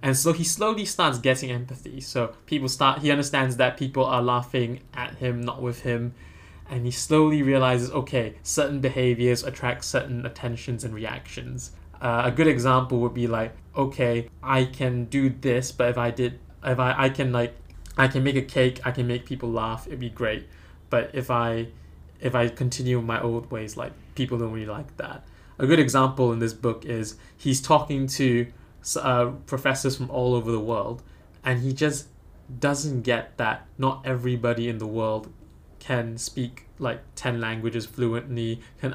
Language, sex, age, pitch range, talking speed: English, male, 20-39, 115-135 Hz, 180 wpm